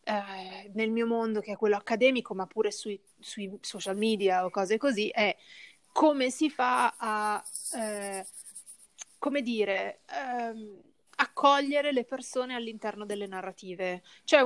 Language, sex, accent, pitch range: Italian, female, native, 205-255 Hz